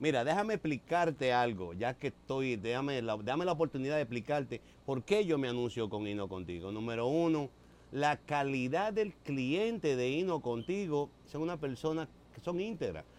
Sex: male